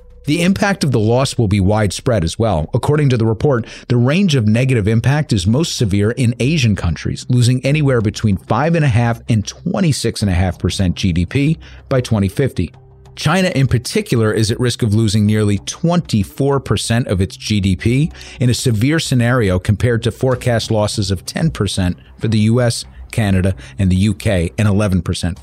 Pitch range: 100-130 Hz